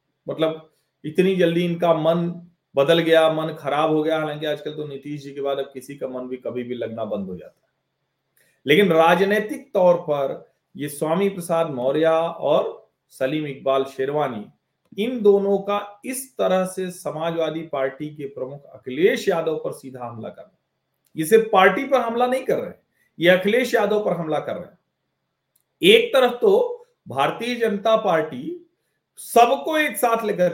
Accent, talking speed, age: native, 170 wpm, 40-59